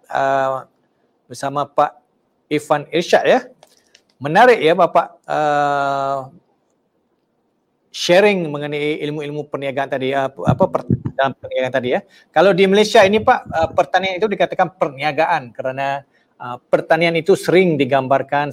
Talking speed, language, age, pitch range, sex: 125 wpm, Malay, 40-59, 135-170 Hz, male